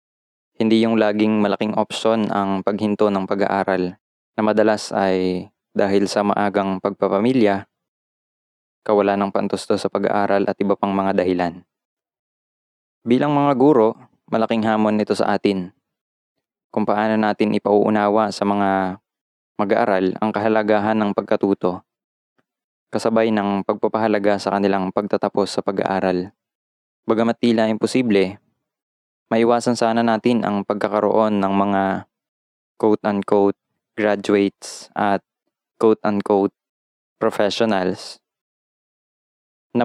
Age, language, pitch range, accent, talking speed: 20-39, English, 100-110 Hz, Filipino, 110 wpm